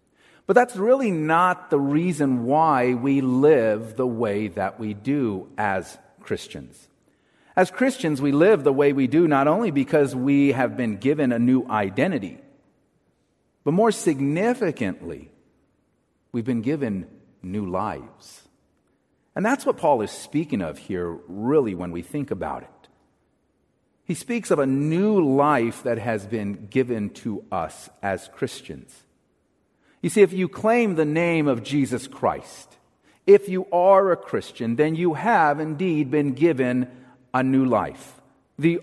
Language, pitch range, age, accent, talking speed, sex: English, 120-170 Hz, 50-69, American, 145 wpm, male